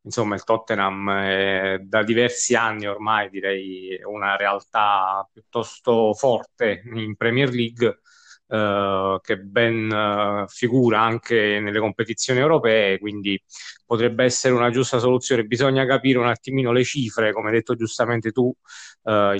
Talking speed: 135 wpm